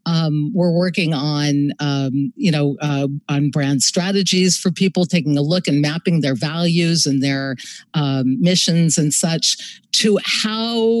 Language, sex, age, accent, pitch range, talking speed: English, female, 50-69, American, 155-200 Hz, 155 wpm